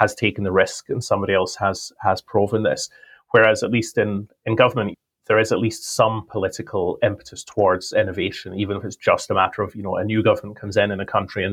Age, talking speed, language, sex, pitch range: 30-49, 230 wpm, English, male, 105-125 Hz